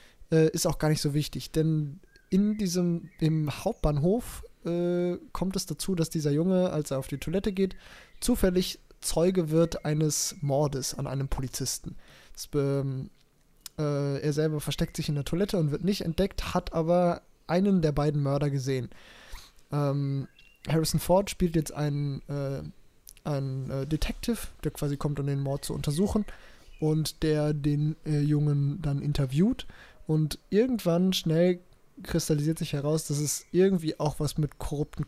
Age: 20-39